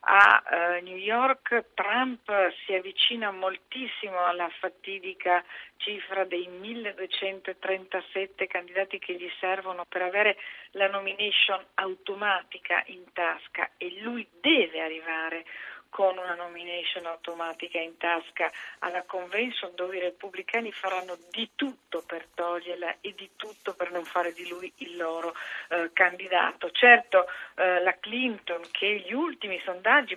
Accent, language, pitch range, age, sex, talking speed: native, Italian, 180-230 Hz, 50-69, female, 125 wpm